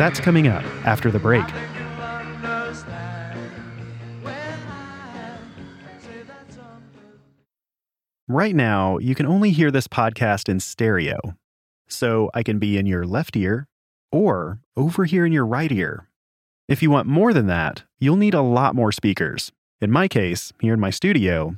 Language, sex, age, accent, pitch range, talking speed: English, male, 30-49, American, 100-150 Hz, 140 wpm